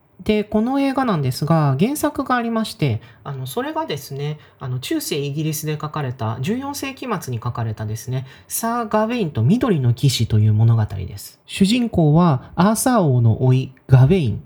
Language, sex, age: Japanese, male, 30-49